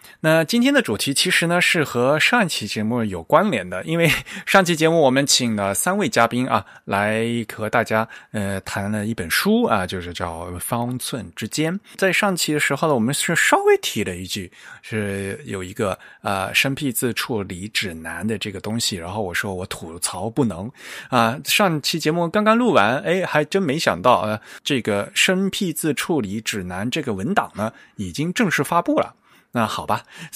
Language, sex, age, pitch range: Chinese, male, 20-39, 100-140 Hz